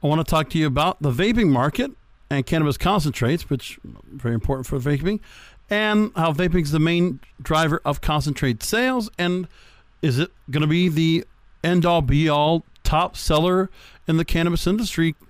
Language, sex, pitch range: English, male, 140-170 Hz